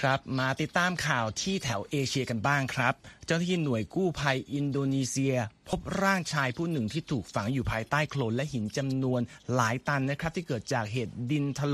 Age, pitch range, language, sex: 30-49, 120-155 Hz, Thai, male